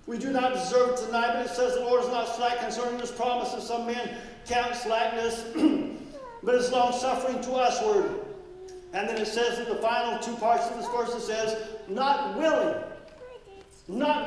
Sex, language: male, English